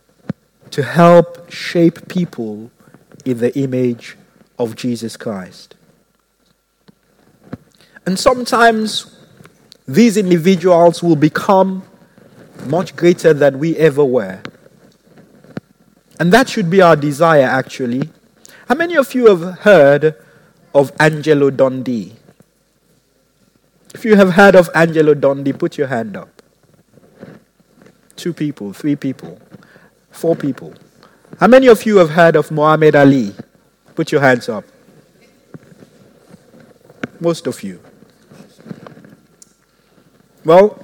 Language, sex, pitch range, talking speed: English, male, 135-185 Hz, 105 wpm